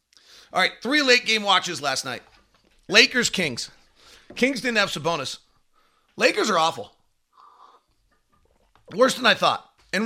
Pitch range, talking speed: 150-205 Hz, 125 wpm